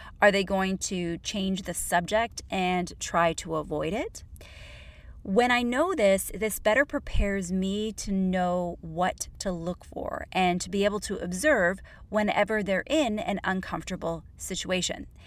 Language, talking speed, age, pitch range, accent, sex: English, 150 wpm, 30-49, 175-225 Hz, American, female